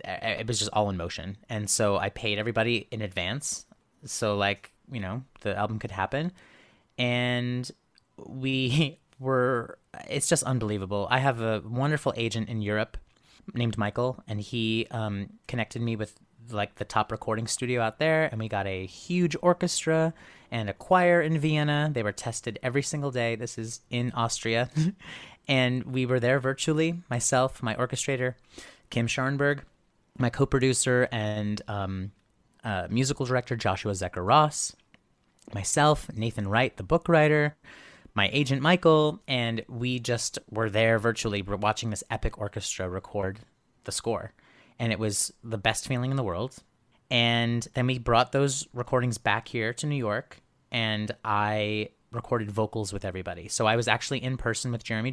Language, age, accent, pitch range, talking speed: English, 30-49, American, 105-130 Hz, 160 wpm